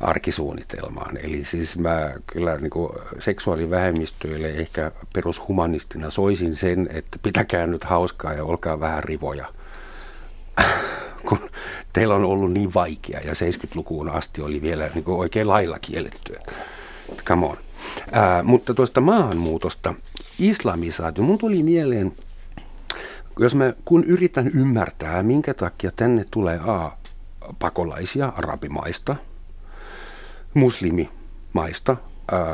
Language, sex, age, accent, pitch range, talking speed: Finnish, male, 50-69, native, 80-115 Hz, 110 wpm